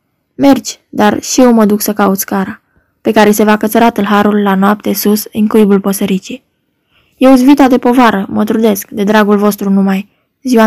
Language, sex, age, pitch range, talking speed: Romanian, female, 10-29, 200-235 Hz, 180 wpm